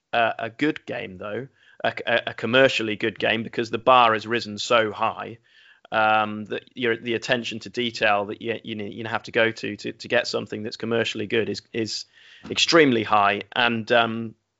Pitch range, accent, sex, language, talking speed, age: 115-145 Hz, British, male, English, 190 wpm, 30-49